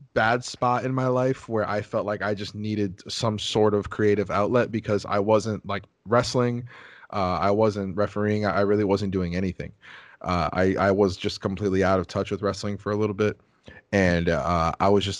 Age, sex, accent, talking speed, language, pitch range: 20-39, male, American, 200 wpm, English, 100-120 Hz